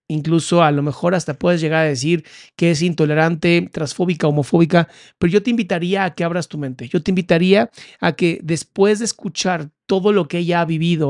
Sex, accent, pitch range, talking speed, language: male, Mexican, 155-195 Hz, 200 wpm, Spanish